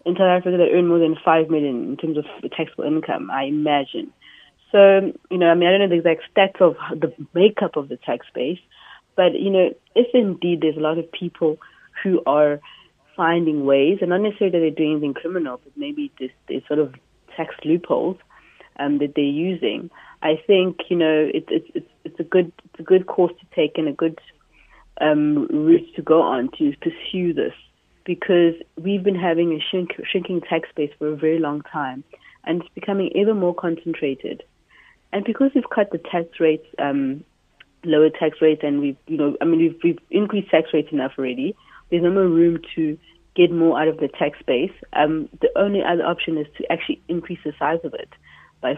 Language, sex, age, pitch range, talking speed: English, female, 30-49, 155-185 Hz, 200 wpm